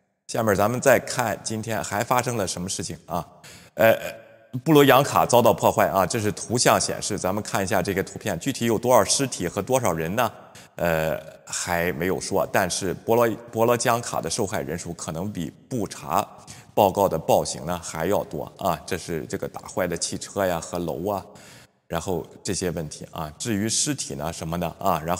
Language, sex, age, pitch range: Chinese, male, 20-39, 95-130 Hz